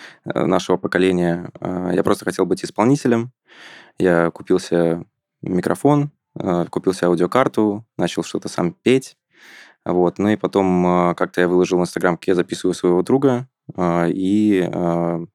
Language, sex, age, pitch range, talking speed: Russian, male, 20-39, 90-115 Hz, 120 wpm